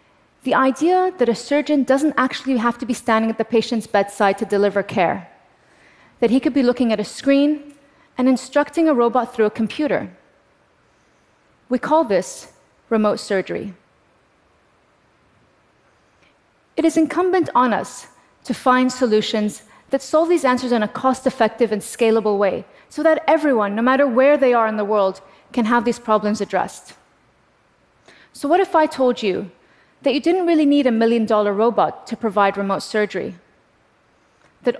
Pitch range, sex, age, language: 210-280 Hz, female, 30-49, Korean